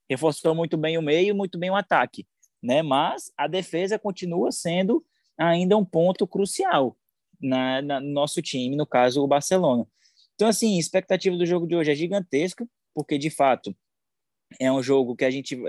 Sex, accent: male, Brazilian